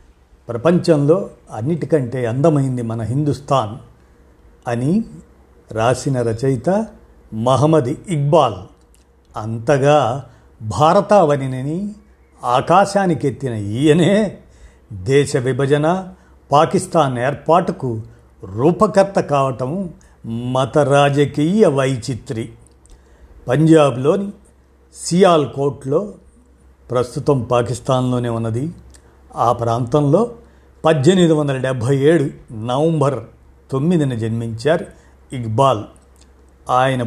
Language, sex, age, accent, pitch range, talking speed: Telugu, male, 50-69, native, 115-160 Hz, 65 wpm